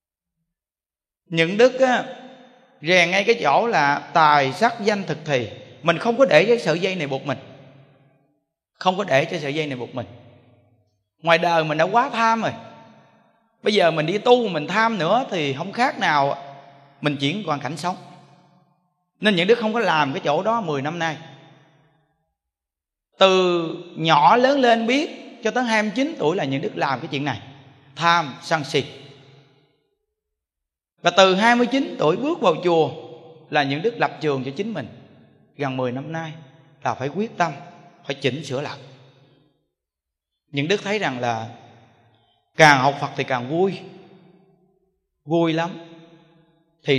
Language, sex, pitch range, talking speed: Vietnamese, male, 140-190 Hz, 165 wpm